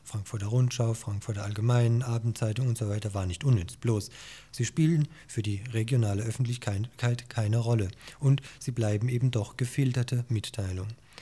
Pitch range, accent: 110-125 Hz, German